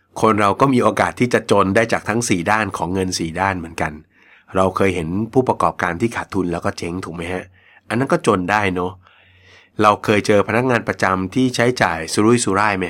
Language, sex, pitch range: Thai, male, 90-110 Hz